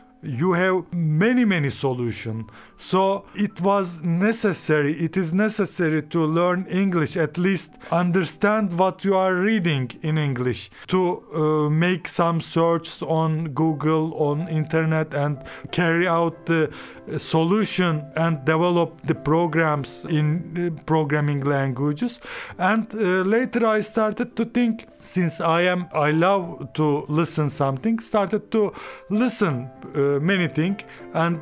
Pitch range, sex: 155-195 Hz, male